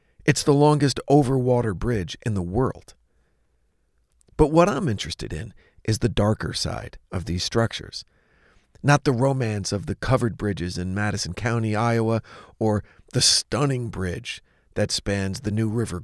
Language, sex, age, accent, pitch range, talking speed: English, male, 40-59, American, 90-125 Hz, 150 wpm